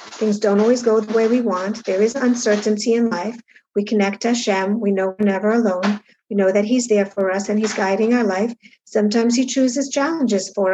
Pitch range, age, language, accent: 205-245 Hz, 60-79, English, American